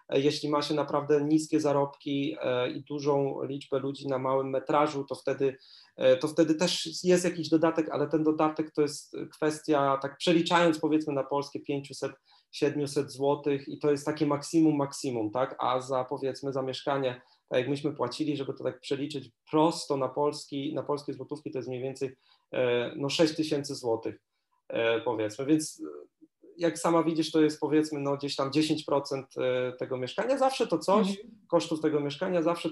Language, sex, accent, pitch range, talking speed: Polish, male, native, 140-160 Hz, 170 wpm